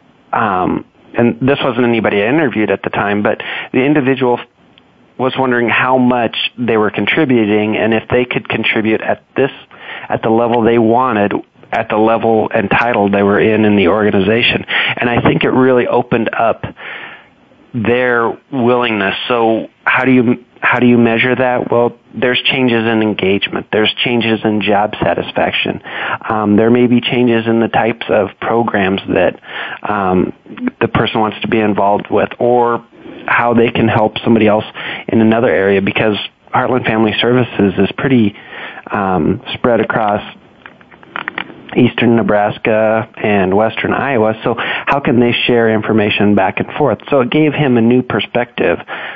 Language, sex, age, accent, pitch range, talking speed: English, male, 40-59, American, 105-125 Hz, 160 wpm